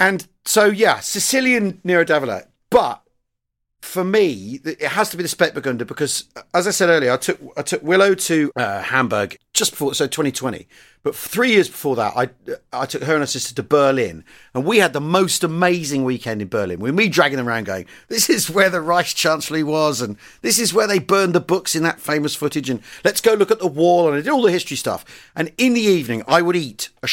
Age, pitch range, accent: 40-59, 140-190 Hz, British